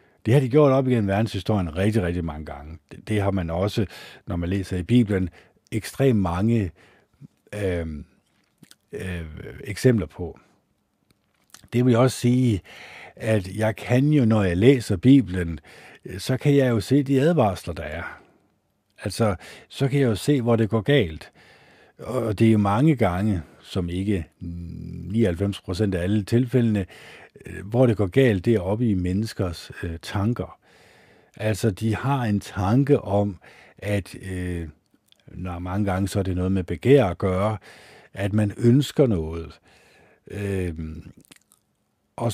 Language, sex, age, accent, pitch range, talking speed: Danish, male, 60-79, native, 95-120 Hz, 155 wpm